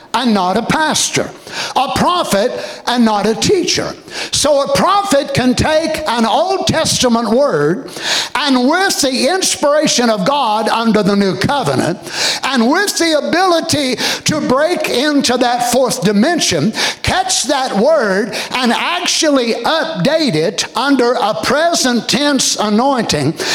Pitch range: 235-320 Hz